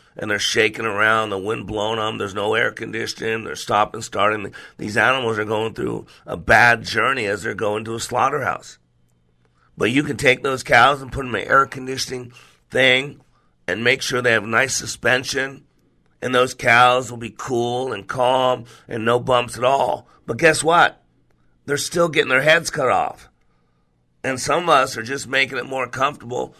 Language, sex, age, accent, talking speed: English, male, 50-69, American, 190 wpm